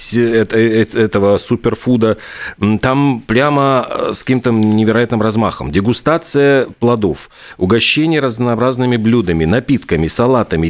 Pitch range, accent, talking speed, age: 95-125 Hz, native, 85 wpm, 40-59